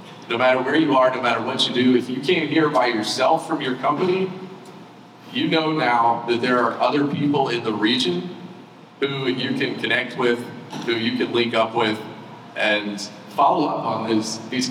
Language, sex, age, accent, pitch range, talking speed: English, male, 40-59, American, 115-145 Hz, 190 wpm